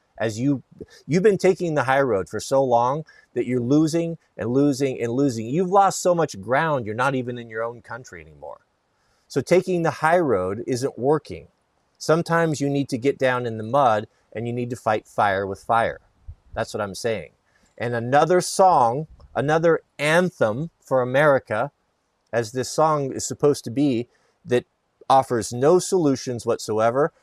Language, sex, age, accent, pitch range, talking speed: Italian, male, 30-49, American, 115-155 Hz, 170 wpm